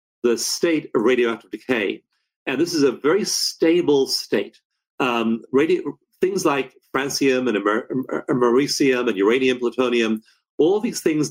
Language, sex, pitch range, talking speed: English, male, 115-160 Hz, 145 wpm